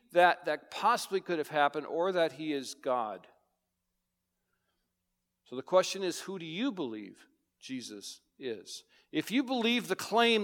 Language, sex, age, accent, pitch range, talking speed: English, male, 50-69, American, 155-235 Hz, 150 wpm